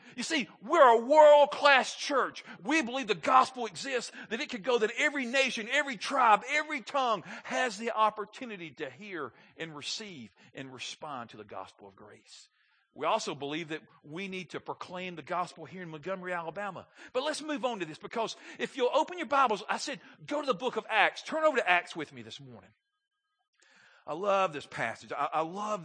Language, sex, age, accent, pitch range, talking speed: English, male, 50-69, American, 155-240 Hz, 195 wpm